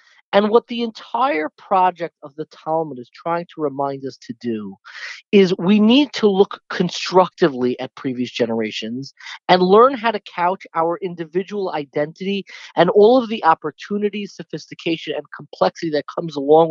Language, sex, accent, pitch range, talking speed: English, male, American, 145-200 Hz, 155 wpm